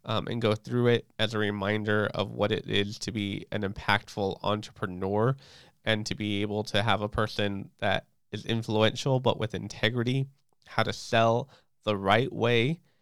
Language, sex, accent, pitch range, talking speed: English, male, American, 105-120 Hz, 170 wpm